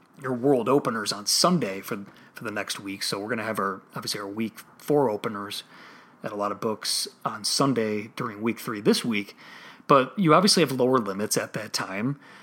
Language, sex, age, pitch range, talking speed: English, male, 30-49, 110-140 Hz, 205 wpm